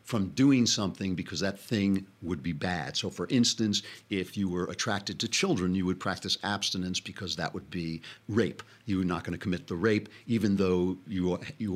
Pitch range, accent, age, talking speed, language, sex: 95-120 Hz, American, 60-79, 200 wpm, English, male